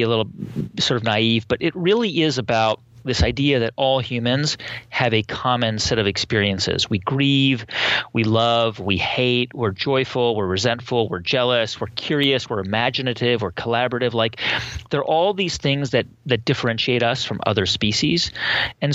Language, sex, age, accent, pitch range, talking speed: English, male, 30-49, American, 110-135 Hz, 170 wpm